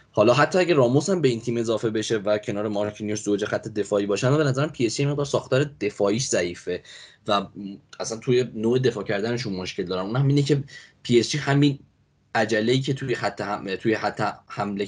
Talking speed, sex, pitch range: 200 wpm, male, 100-130 Hz